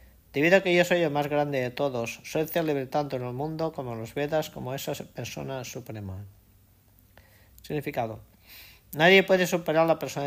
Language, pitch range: Spanish, 110-155 Hz